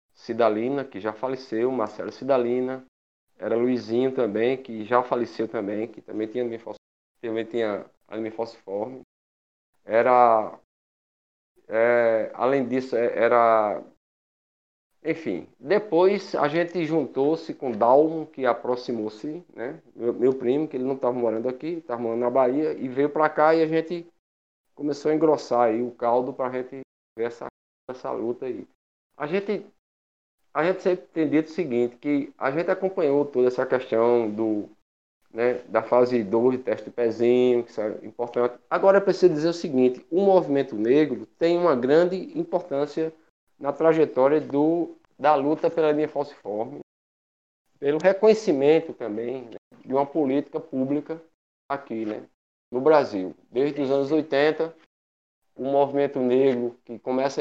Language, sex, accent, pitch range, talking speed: Portuguese, male, Brazilian, 115-155 Hz, 145 wpm